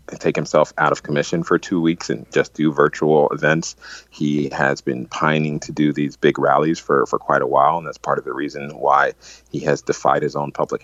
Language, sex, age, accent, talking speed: English, male, 40-59, American, 220 wpm